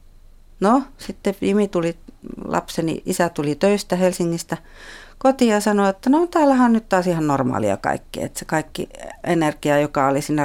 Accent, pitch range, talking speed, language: native, 145-195 Hz, 155 wpm, Finnish